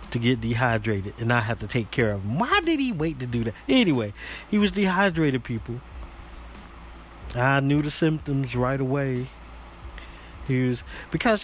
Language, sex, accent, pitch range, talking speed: English, male, American, 120-145 Hz, 170 wpm